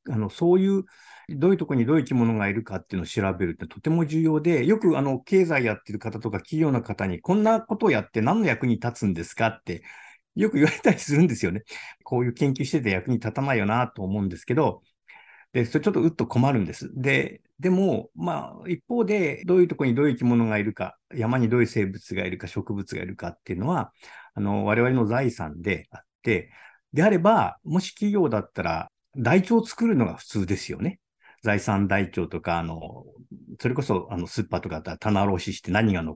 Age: 50-69